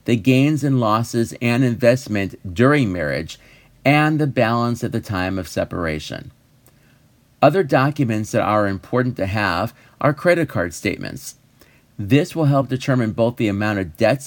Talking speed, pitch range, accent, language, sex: 150 wpm, 110-135 Hz, American, English, male